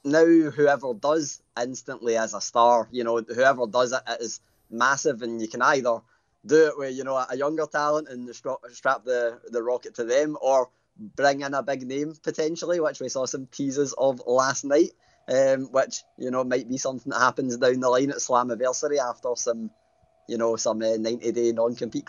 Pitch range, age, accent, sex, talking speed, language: 125-150 Hz, 20-39, British, male, 195 wpm, English